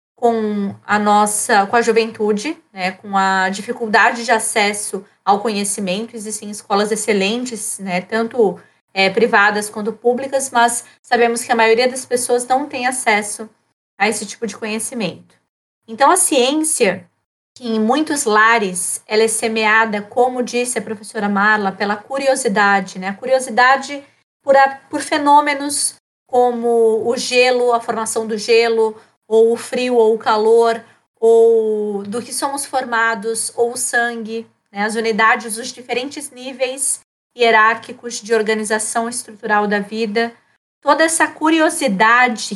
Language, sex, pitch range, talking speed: Portuguese, female, 215-245 Hz, 140 wpm